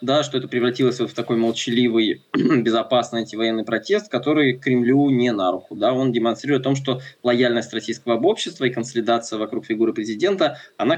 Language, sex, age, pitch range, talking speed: Russian, male, 20-39, 115-135 Hz, 175 wpm